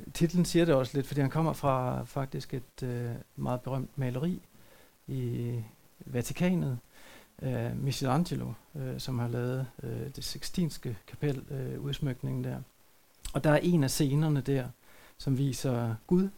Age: 60-79